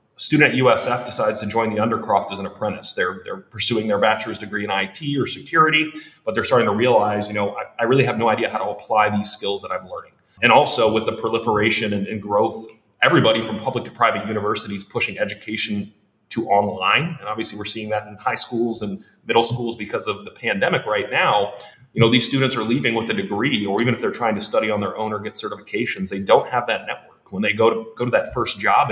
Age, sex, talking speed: 30-49, male, 235 wpm